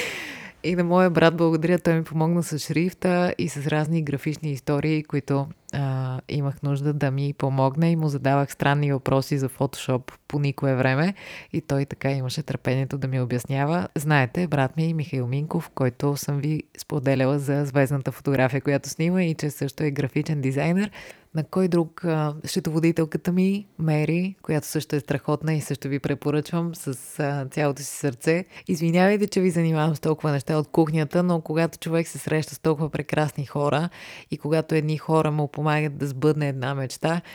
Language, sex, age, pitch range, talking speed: Bulgarian, female, 20-39, 140-165 Hz, 170 wpm